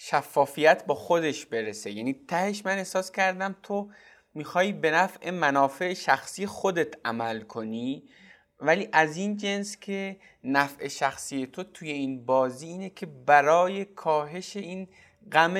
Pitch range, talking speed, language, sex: 130-185 Hz, 135 wpm, Persian, male